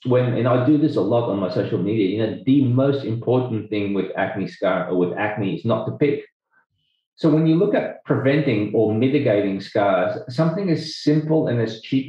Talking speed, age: 210 wpm, 30-49